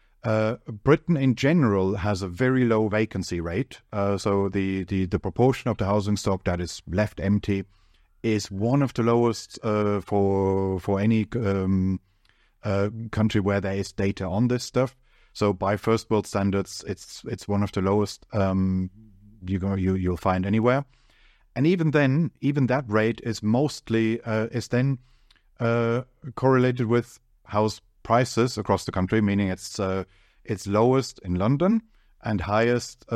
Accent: German